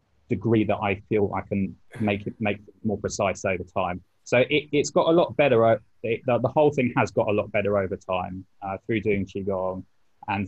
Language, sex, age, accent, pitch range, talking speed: English, male, 20-39, British, 95-105 Hz, 220 wpm